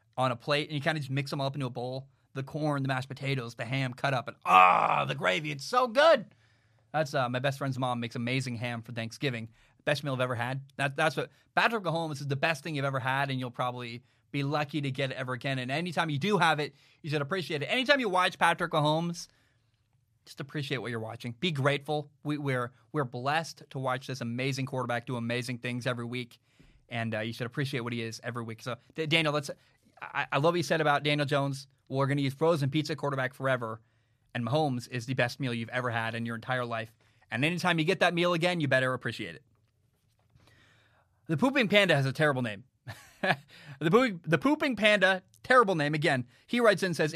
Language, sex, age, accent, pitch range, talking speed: English, male, 20-39, American, 120-155 Hz, 230 wpm